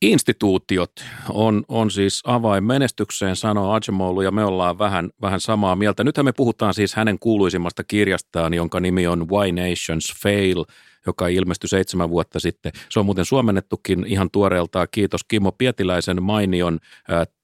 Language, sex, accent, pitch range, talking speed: Finnish, male, native, 90-105 Hz, 150 wpm